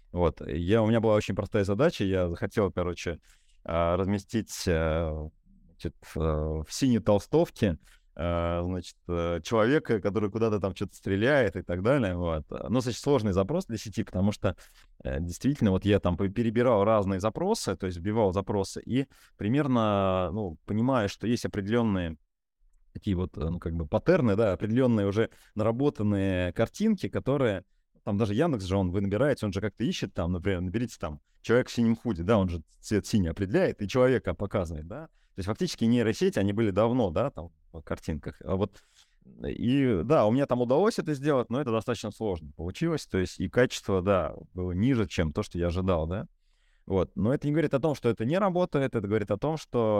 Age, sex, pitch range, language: 30-49, male, 90-115 Hz, Russian